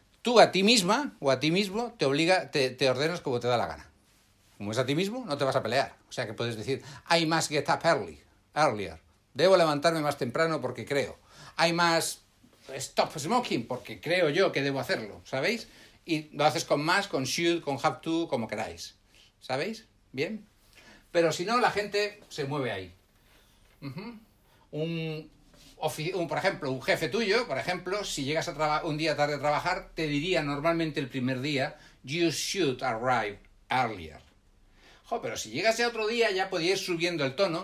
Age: 60-79